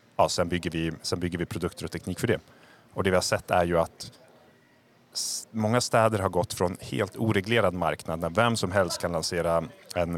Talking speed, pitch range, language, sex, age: 175 wpm, 85-110 Hz, Swedish, male, 30-49